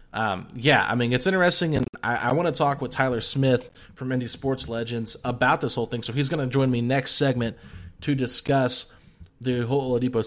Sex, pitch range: male, 120-140 Hz